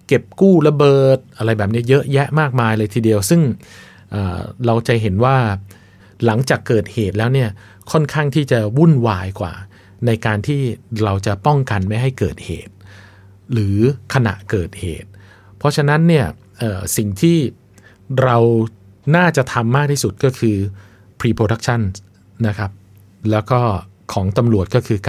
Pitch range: 100-130 Hz